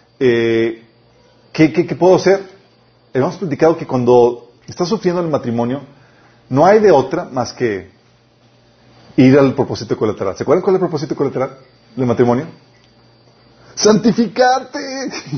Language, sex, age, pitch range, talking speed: Spanish, male, 40-59, 125-190 Hz, 135 wpm